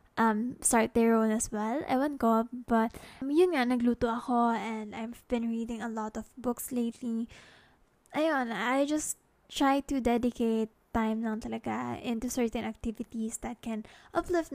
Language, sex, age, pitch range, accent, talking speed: English, female, 20-39, 220-260 Hz, Filipino, 160 wpm